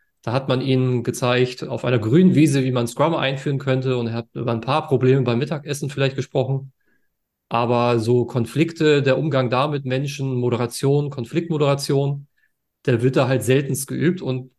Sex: male